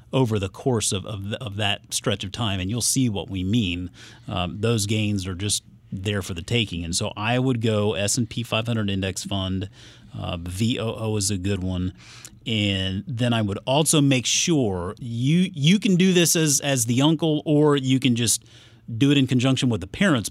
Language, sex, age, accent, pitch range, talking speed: English, male, 30-49, American, 100-135 Hz, 200 wpm